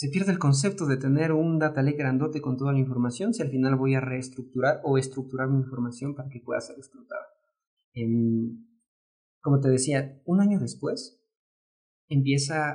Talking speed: 165 wpm